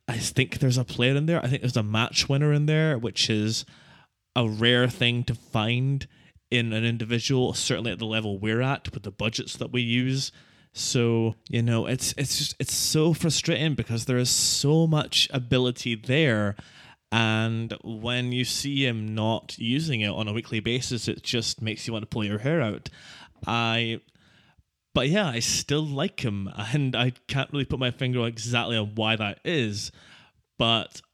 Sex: male